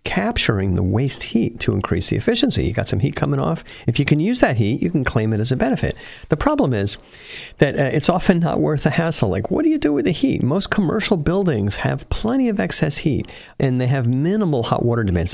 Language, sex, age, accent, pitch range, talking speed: English, male, 50-69, American, 100-155 Hz, 240 wpm